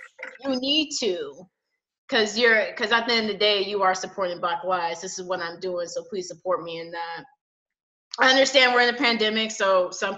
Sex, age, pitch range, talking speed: female, 20-39, 185-245 Hz, 210 wpm